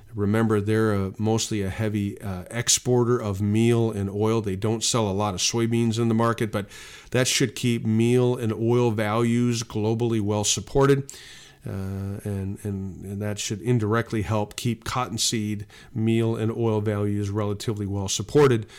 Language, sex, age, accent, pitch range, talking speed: English, male, 40-59, American, 105-120 Hz, 155 wpm